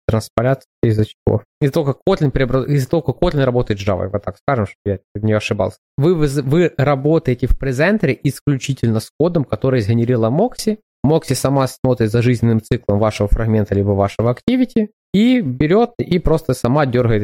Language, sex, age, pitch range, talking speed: Ukrainian, male, 20-39, 115-155 Hz, 160 wpm